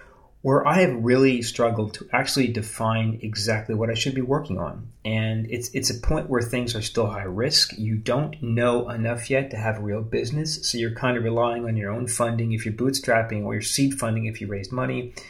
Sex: male